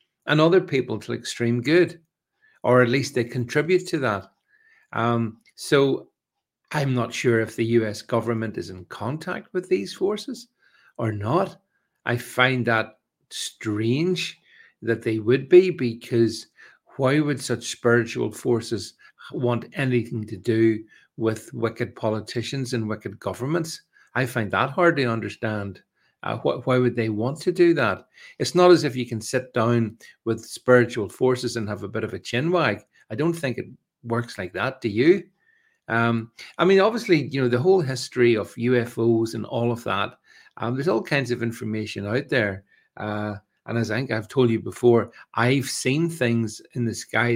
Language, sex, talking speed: English, male, 170 wpm